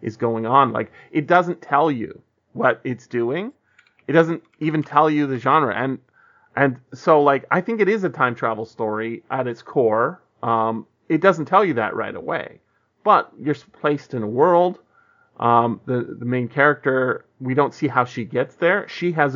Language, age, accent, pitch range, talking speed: English, 30-49, American, 115-145 Hz, 190 wpm